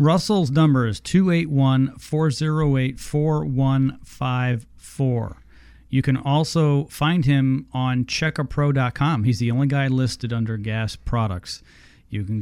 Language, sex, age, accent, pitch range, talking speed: English, male, 40-59, American, 110-145 Hz, 100 wpm